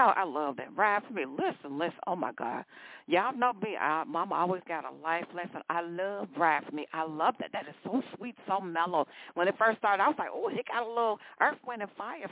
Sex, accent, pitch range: female, American, 170-250 Hz